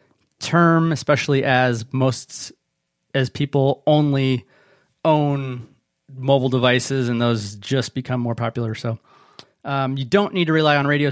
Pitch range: 130-165 Hz